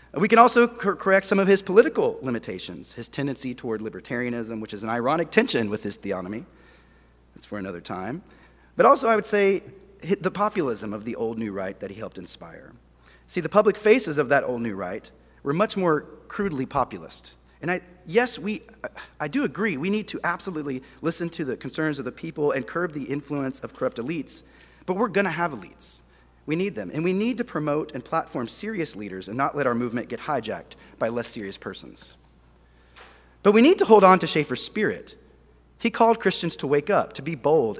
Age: 30-49